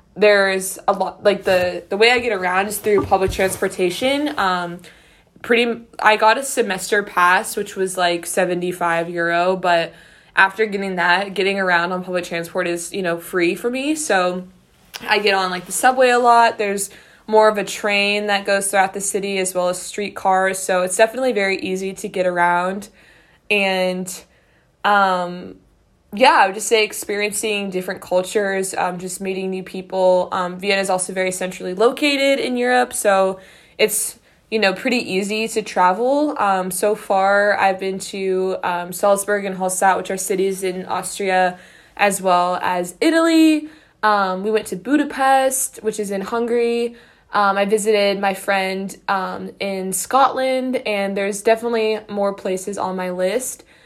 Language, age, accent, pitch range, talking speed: English, 20-39, American, 185-215 Hz, 165 wpm